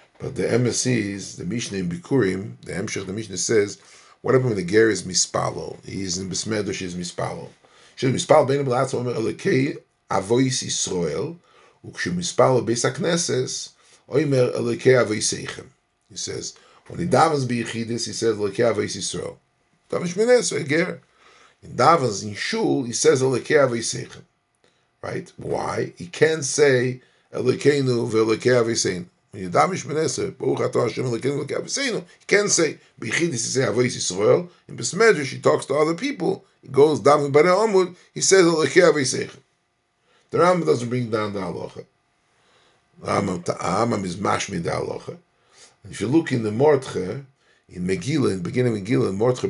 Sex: male